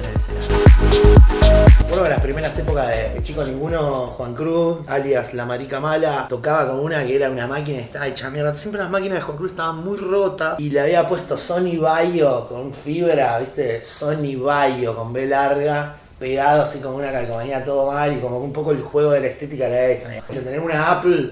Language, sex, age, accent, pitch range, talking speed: Spanish, male, 20-39, Argentinian, 125-160 Hz, 200 wpm